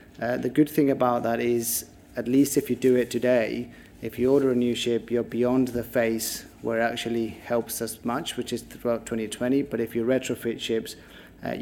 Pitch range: 115-130 Hz